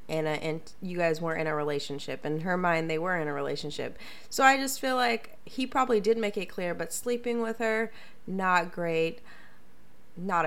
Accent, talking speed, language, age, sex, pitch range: American, 195 wpm, English, 20-39, female, 160-220 Hz